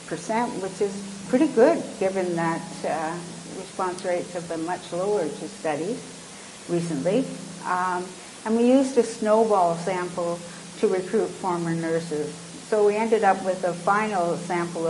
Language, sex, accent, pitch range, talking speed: English, female, American, 170-205 Hz, 140 wpm